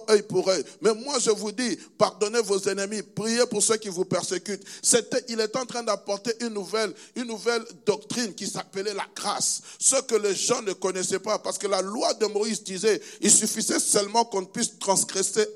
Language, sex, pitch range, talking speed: French, male, 185-220 Hz, 200 wpm